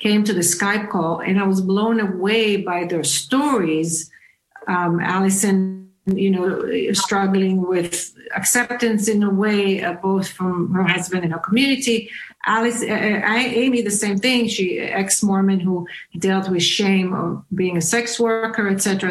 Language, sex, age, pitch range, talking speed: English, female, 50-69, 190-225 Hz, 160 wpm